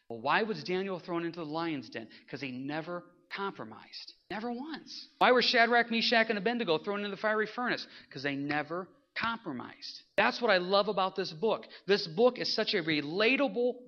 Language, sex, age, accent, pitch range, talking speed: English, male, 40-59, American, 140-200 Hz, 185 wpm